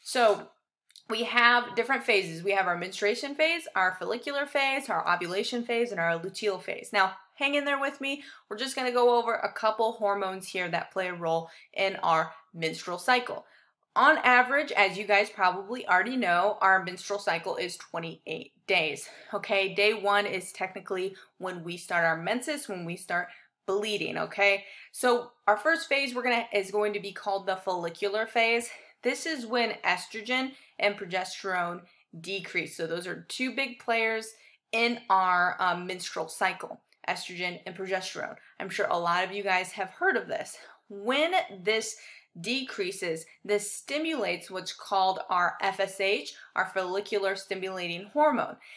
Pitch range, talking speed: 185-235 Hz, 165 wpm